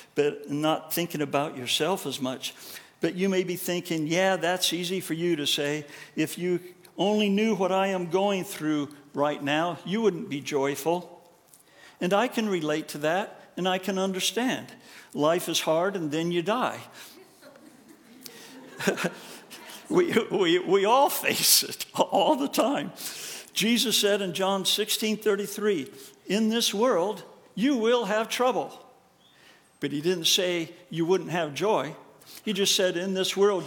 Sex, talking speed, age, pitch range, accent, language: male, 155 wpm, 60-79, 155-205 Hz, American, English